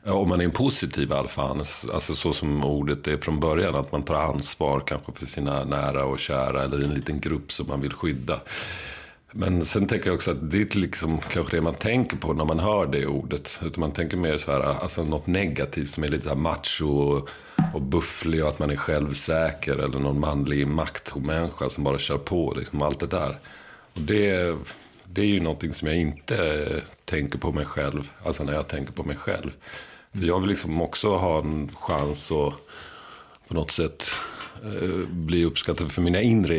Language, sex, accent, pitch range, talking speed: English, male, Swedish, 70-85 Hz, 195 wpm